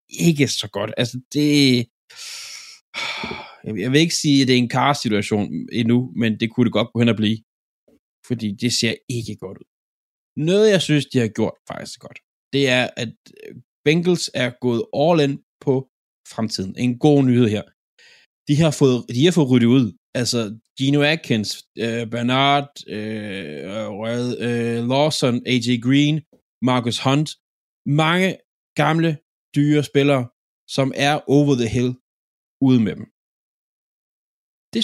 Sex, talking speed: male, 150 wpm